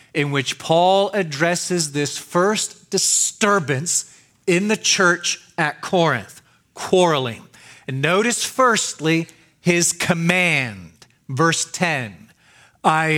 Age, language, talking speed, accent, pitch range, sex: 40-59, English, 95 wpm, American, 145-190 Hz, male